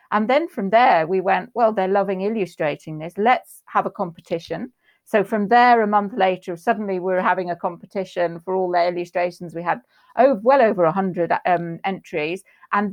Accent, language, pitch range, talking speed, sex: British, English, 180-210 Hz, 185 wpm, female